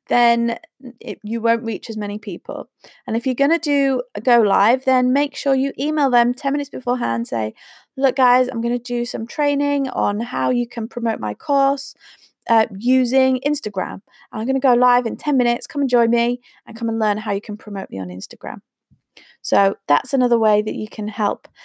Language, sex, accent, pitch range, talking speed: English, female, British, 220-270 Hz, 200 wpm